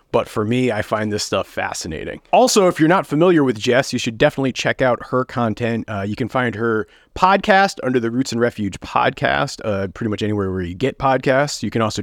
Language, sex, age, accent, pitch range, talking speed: English, male, 30-49, American, 110-145 Hz, 225 wpm